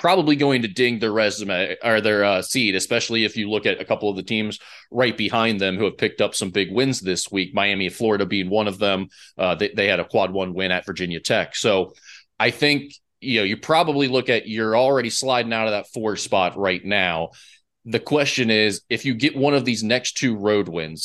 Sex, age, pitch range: male, 30-49, 100-120 Hz